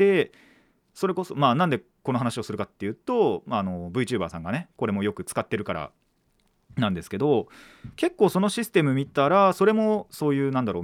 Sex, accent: male, native